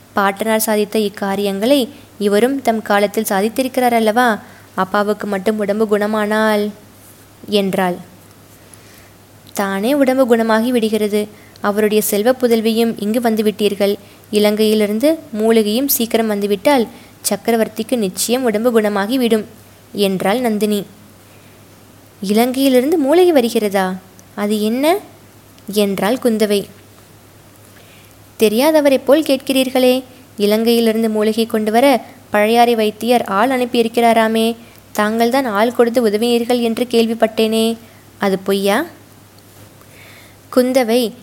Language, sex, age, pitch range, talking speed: Tamil, female, 20-39, 200-235 Hz, 90 wpm